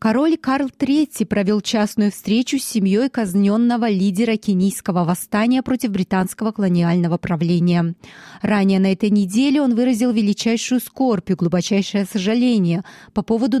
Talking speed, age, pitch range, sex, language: 130 wpm, 20-39, 185-235 Hz, female, Russian